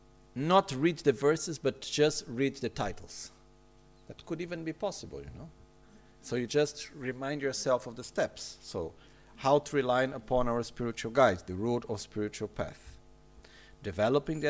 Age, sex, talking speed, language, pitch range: 50-69, male, 160 wpm, Italian, 95-135 Hz